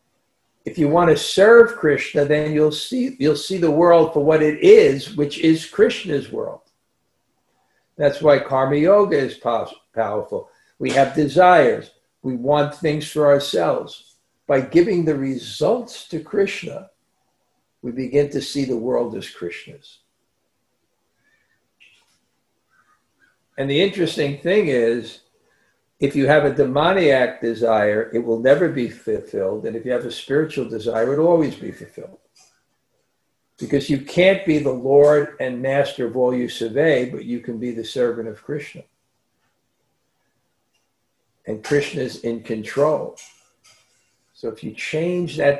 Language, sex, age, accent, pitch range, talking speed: English, male, 60-79, American, 125-160 Hz, 135 wpm